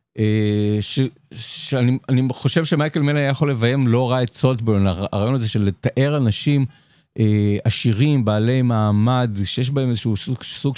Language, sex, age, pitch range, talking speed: Hebrew, male, 50-69, 100-130 Hz, 135 wpm